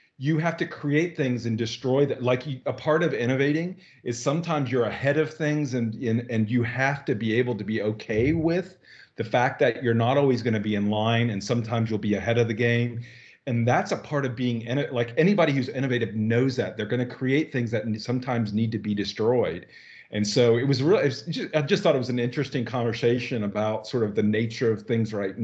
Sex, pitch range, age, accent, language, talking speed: male, 110-130 Hz, 40-59, American, English, 225 wpm